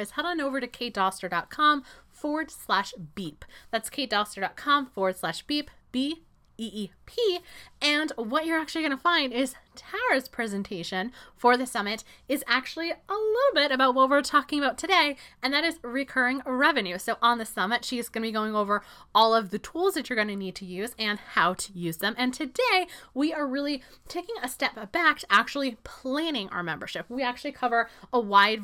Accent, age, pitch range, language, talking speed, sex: American, 20-39, 205-285 Hz, English, 185 wpm, female